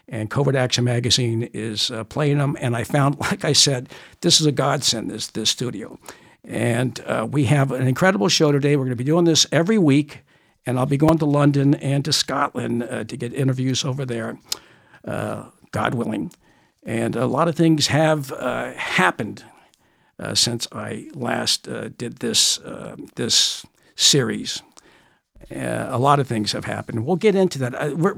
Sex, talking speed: male, 185 wpm